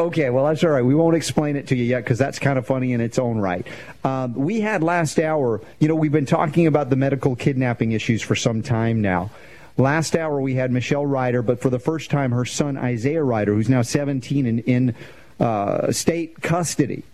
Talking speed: 220 wpm